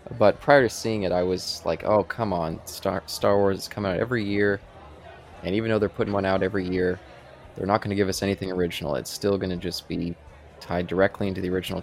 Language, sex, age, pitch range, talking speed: English, male, 20-39, 85-105 Hz, 240 wpm